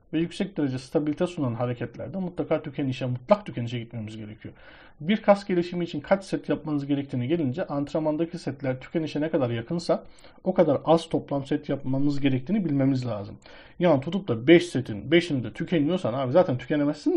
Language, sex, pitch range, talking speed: Turkish, male, 130-180 Hz, 165 wpm